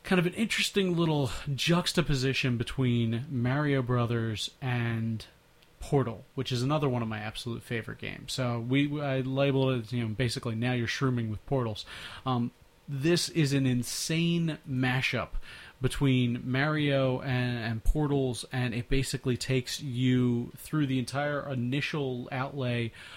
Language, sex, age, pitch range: English, male, 30-49, 120-140 Hz